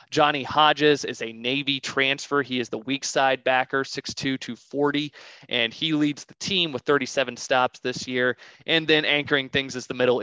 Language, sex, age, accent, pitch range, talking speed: English, male, 20-39, American, 120-140 Hz, 180 wpm